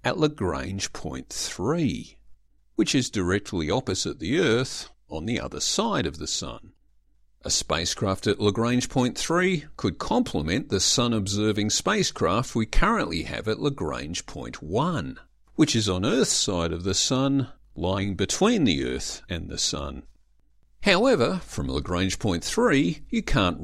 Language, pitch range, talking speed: English, 80-120 Hz, 145 wpm